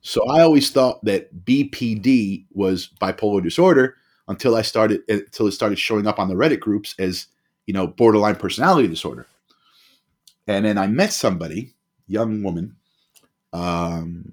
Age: 30-49